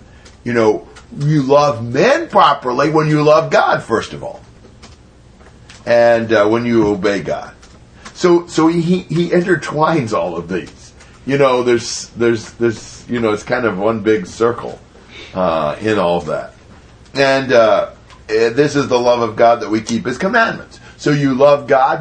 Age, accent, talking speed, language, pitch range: 50-69, American, 170 wpm, English, 110-145 Hz